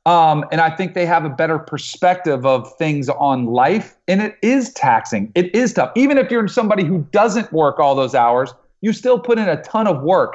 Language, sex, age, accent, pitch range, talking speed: English, male, 40-59, American, 150-205 Hz, 220 wpm